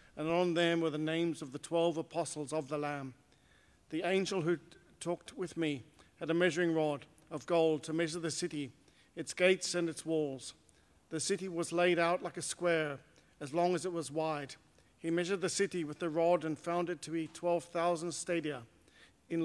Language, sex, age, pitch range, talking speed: English, male, 50-69, 155-175 Hz, 195 wpm